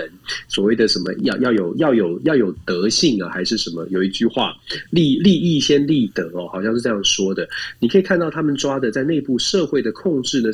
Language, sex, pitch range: Chinese, male, 105-140 Hz